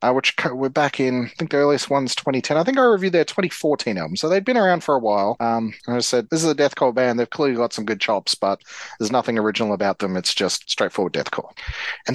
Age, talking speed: 30-49, 250 wpm